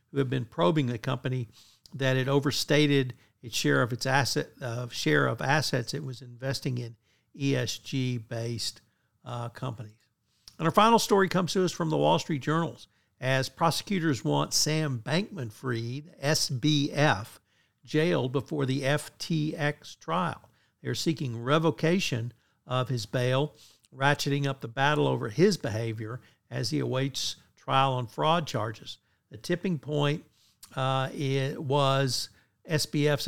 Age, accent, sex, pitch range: 60-79, American, male, 125-150 Hz